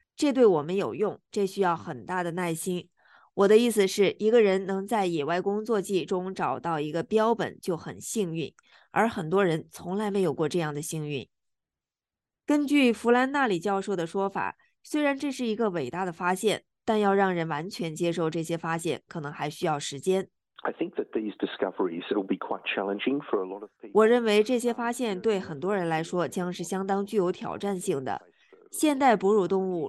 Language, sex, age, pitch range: Chinese, female, 20-39, 170-215 Hz